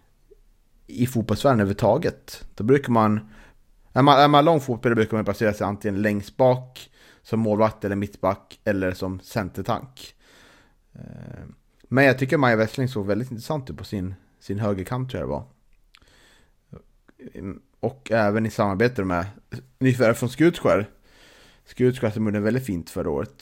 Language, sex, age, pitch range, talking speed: Swedish, male, 30-49, 100-125 Hz, 145 wpm